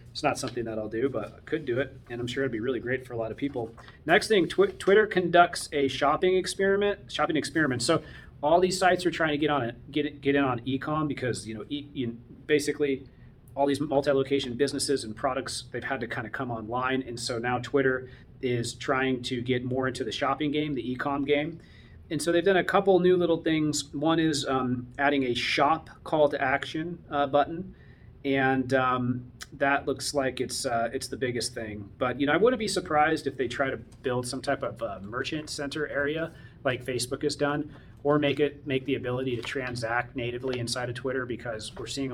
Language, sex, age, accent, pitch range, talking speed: English, male, 30-49, American, 120-150 Hz, 220 wpm